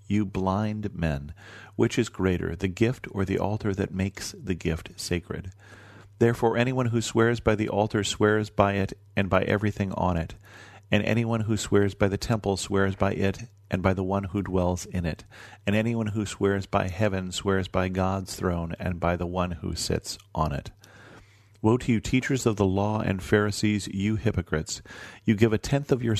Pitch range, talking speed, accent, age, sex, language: 95-110 Hz, 190 wpm, American, 40-59, male, English